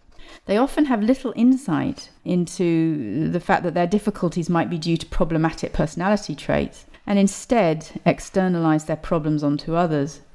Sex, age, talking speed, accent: female, 40-59, 145 wpm, British